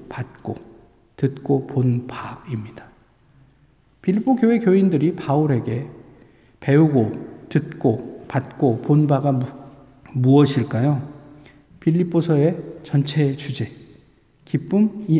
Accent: native